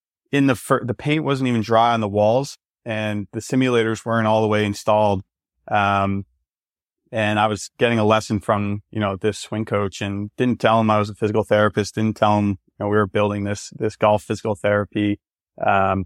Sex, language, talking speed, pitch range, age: male, English, 205 wpm, 100-110 Hz, 20-39